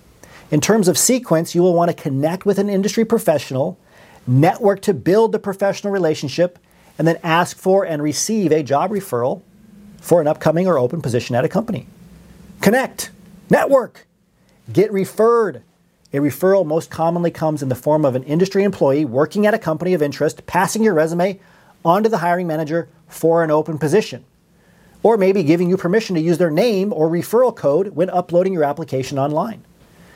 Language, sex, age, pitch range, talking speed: English, male, 40-59, 160-195 Hz, 175 wpm